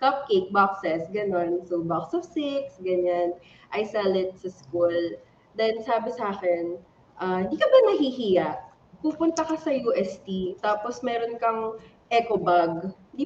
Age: 20-39